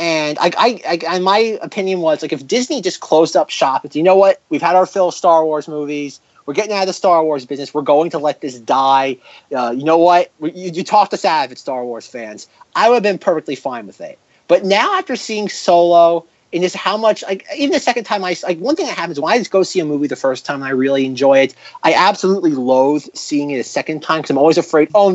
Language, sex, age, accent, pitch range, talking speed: English, male, 30-49, American, 140-195 Hz, 265 wpm